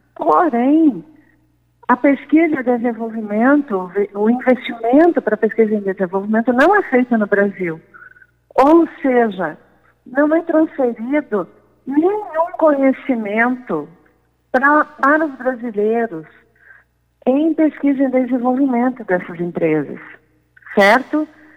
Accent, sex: Brazilian, female